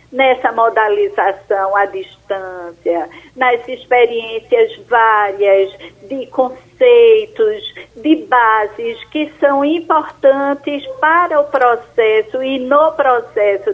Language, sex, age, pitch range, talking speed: Portuguese, female, 50-69, 205-305 Hz, 85 wpm